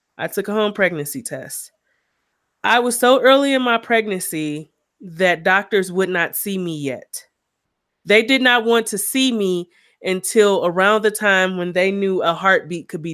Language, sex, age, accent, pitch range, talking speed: English, female, 20-39, American, 180-235 Hz, 175 wpm